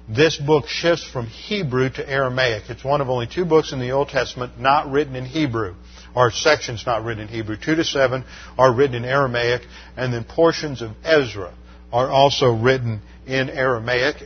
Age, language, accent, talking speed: 50-69, English, American, 185 wpm